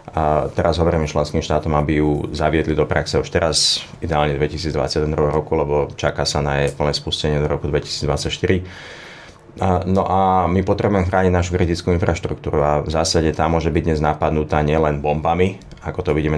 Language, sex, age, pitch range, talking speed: Slovak, male, 30-49, 75-85 Hz, 170 wpm